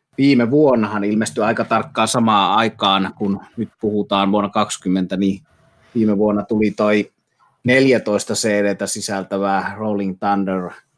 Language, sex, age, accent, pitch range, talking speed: Finnish, male, 30-49, native, 100-110 Hz, 120 wpm